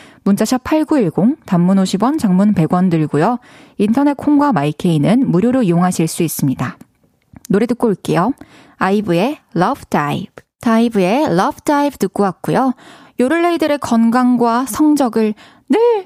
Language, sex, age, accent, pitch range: Korean, female, 20-39, native, 200-285 Hz